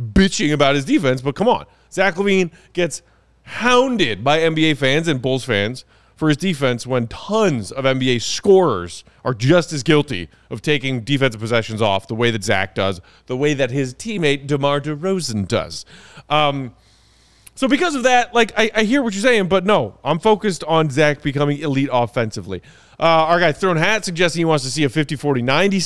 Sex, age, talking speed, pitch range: male, 30-49, 185 wpm, 125-175 Hz